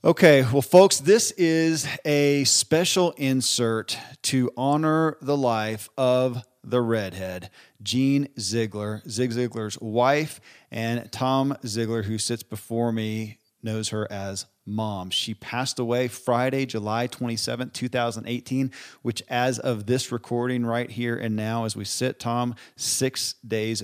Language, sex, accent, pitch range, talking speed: English, male, American, 110-130 Hz, 135 wpm